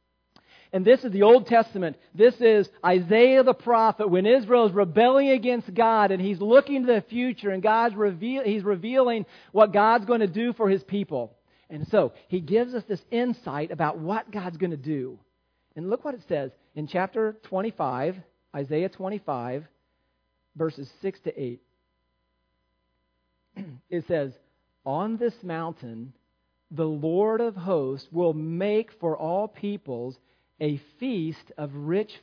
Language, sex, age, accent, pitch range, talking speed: English, male, 40-59, American, 160-235 Hz, 150 wpm